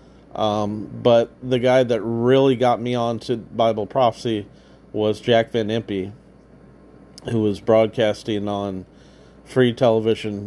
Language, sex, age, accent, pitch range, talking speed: English, male, 40-59, American, 105-120 Hz, 125 wpm